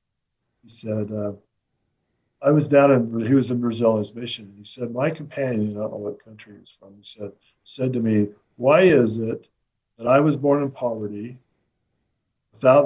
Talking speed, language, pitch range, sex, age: 185 wpm, English, 110-135 Hz, male, 50-69